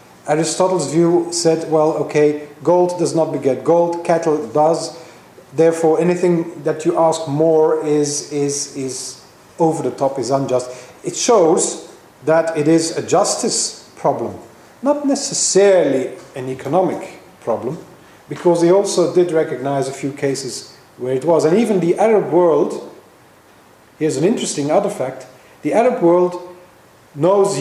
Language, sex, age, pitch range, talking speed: English, male, 40-59, 150-185 Hz, 135 wpm